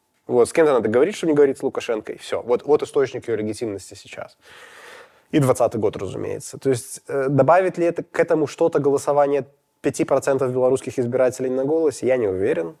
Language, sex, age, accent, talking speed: Russian, male, 20-39, native, 185 wpm